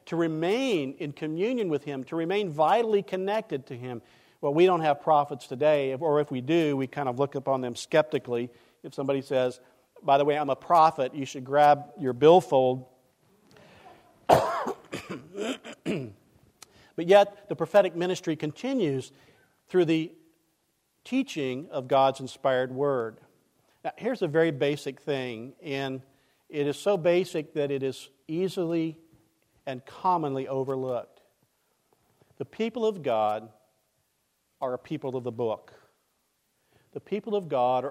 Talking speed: 140 wpm